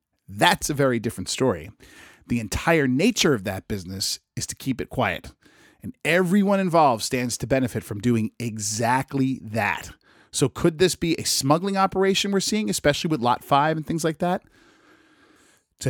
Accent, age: American, 40-59